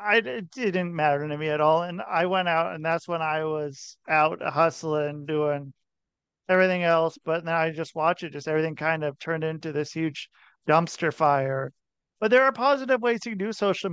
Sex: male